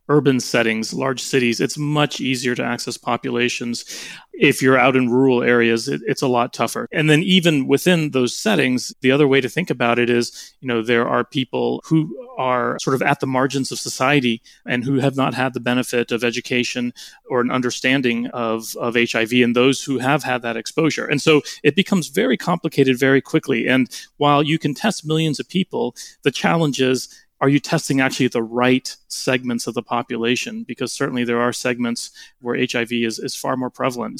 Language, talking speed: English, 195 wpm